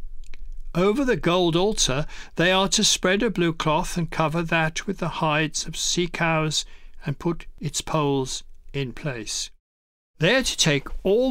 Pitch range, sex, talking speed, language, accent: 145-190 Hz, male, 165 wpm, English, British